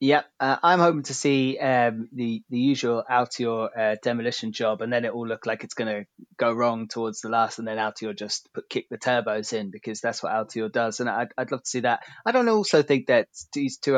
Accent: British